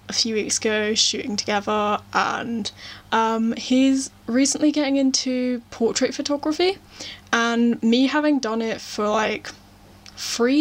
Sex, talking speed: female, 125 wpm